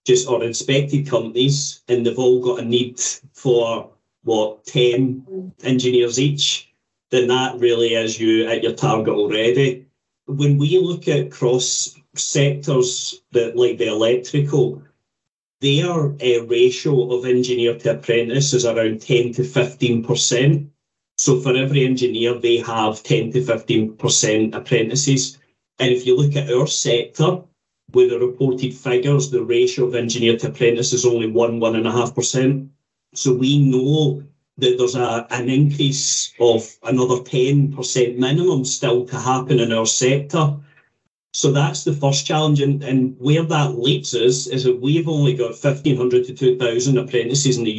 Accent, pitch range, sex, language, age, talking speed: British, 120-140 Hz, male, English, 30-49, 150 wpm